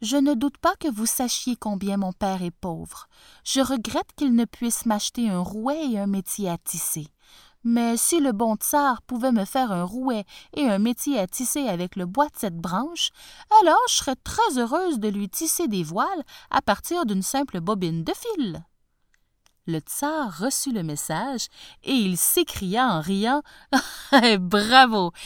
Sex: female